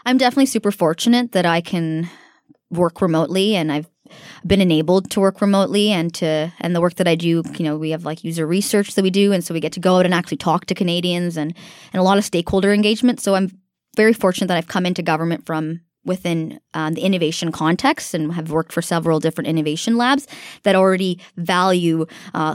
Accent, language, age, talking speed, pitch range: American, English, 20-39, 215 wpm, 170-215 Hz